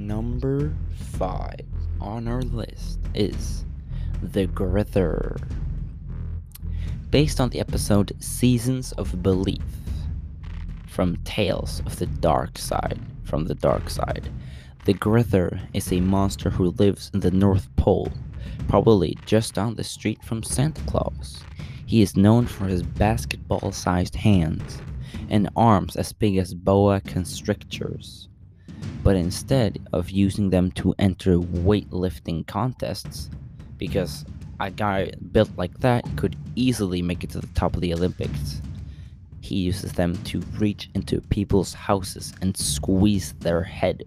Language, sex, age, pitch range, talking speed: English, male, 20-39, 80-100 Hz, 130 wpm